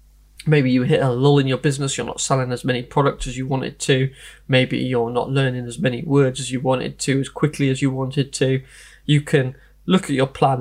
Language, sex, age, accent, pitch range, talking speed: English, male, 20-39, British, 130-155 Hz, 230 wpm